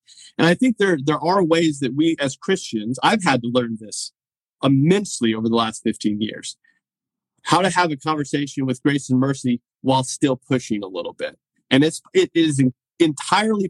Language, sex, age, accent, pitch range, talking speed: English, male, 40-59, American, 125-170 Hz, 185 wpm